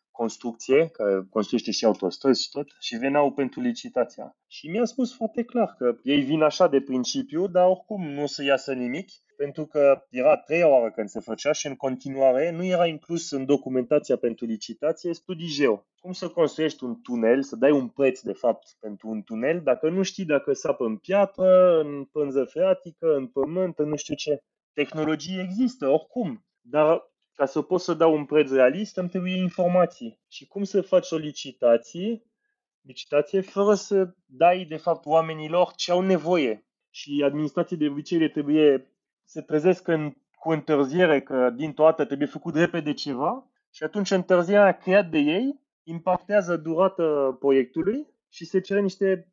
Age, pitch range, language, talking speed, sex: 30-49, 140-185 Hz, Romanian, 170 wpm, male